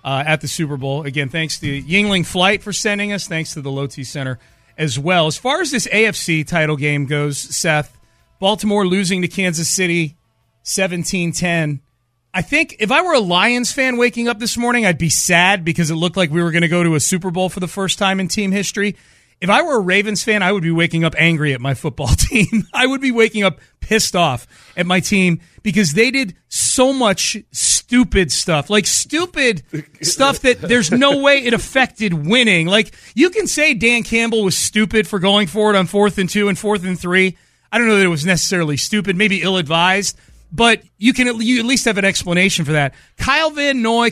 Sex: male